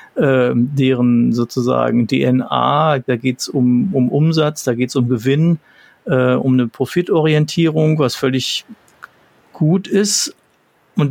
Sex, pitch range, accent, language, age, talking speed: male, 130-155 Hz, German, German, 40-59, 130 wpm